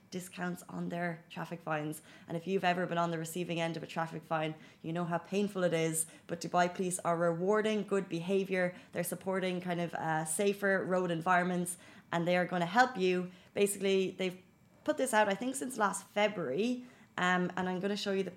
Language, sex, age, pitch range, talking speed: Arabic, female, 20-39, 170-200 Hz, 210 wpm